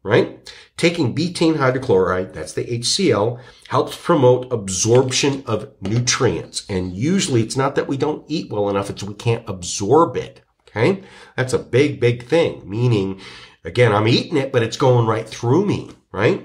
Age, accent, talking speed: 50-69, American, 165 wpm